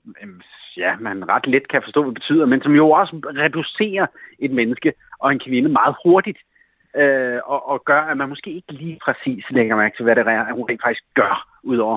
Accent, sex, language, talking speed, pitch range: native, male, Danish, 200 wpm, 130-195 Hz